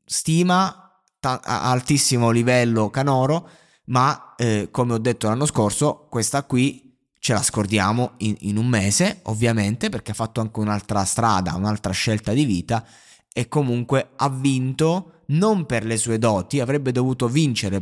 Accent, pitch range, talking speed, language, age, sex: native, 105-135 Hz, 150 wpm, Italian, 20-39, male